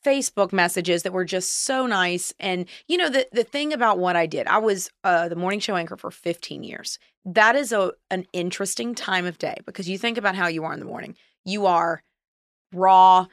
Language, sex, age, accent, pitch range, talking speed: English, female, 30-49, American, 175-215 Hz, 215 wpm